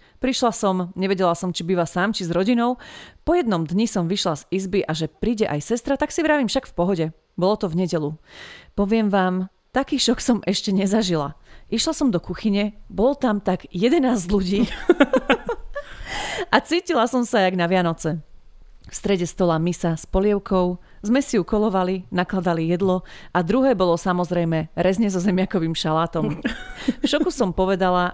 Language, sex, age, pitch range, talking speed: Slovak, female, 30-49, 170-215 Hz, 170 wpm